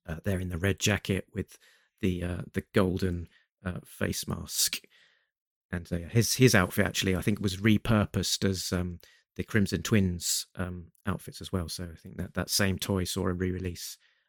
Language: English